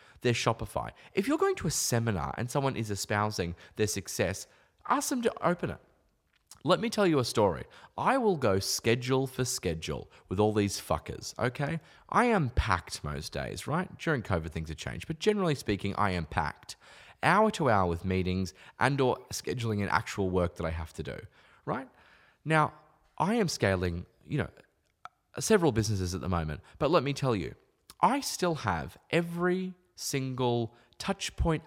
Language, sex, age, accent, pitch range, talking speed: English, male, 20-39, Australian, 95-155 Hz, 175 wpm